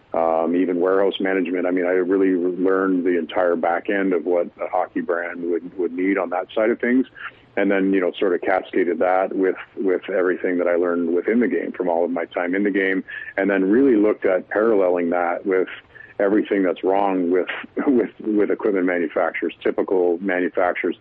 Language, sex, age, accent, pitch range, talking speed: English, male, 50-69, American, 85-95 Hz, 195 wpm